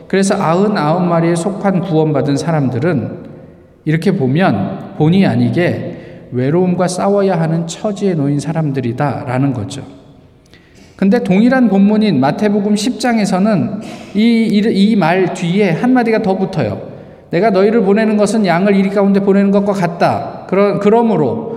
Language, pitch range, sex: Korean, 160-215 Hz, male